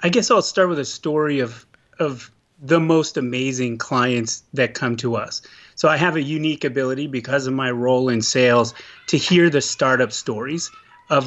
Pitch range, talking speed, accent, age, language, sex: 125-160 Hz, 185 wpm, American, 30-49, English, male